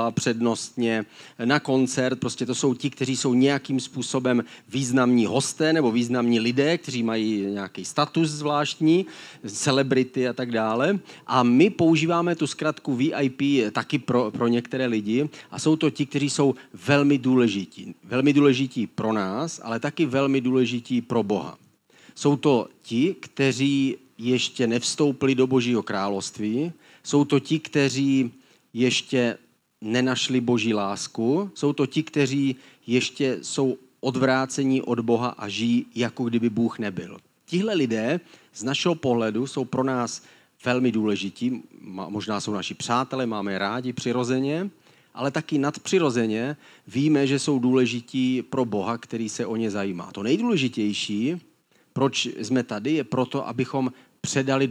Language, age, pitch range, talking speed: Czech, 40-59, 120-140 Hz, 140 wpm